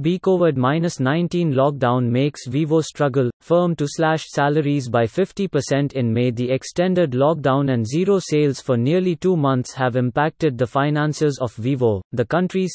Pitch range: 130-160 Hz